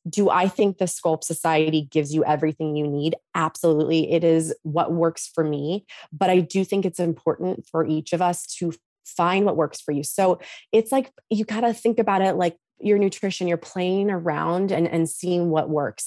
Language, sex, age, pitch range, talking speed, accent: English, female, 20-39, 155-180 Hz, 200 wpm, American